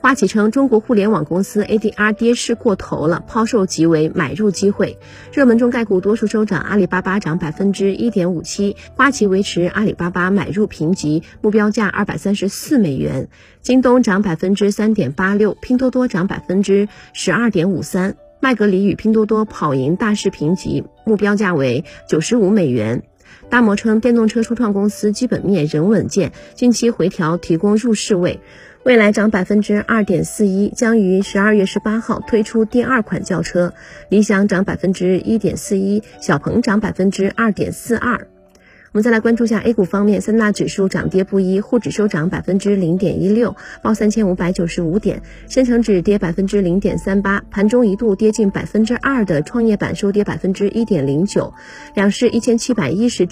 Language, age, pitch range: Chinese, 30-49, 185-220 Hz